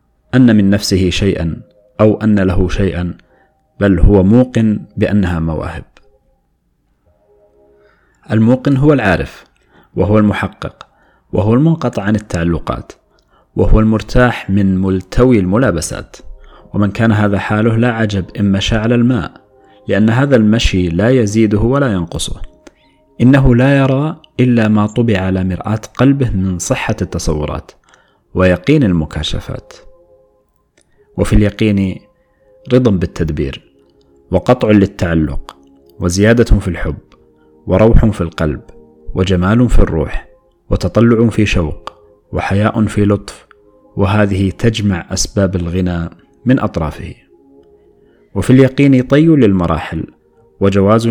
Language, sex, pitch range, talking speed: Arabic, male, 90-110 Hz, 105 wpm